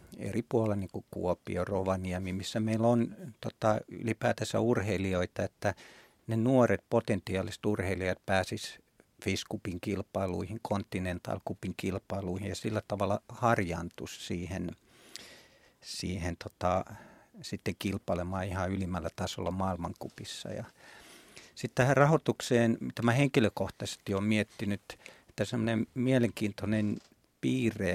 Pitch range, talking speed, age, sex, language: 95-115 Hz, 95 wpm, 60-79, male, Finnish